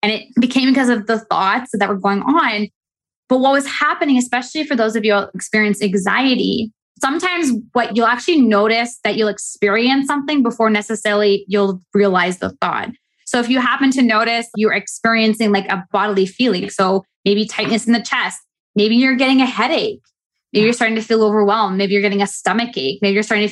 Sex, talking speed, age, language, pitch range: female, 195 wpm, 20-39, English, 205-245 Hz